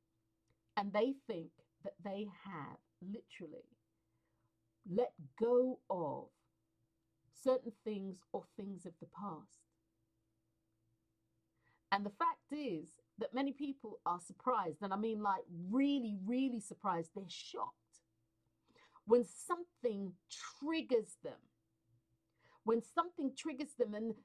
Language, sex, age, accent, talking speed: English, female, 50-69, British, 110 wpm